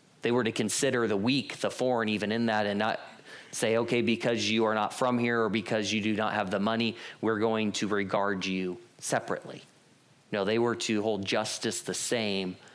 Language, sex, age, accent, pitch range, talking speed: English, male, 30-49, American, 100-115 Hz, 200 wpm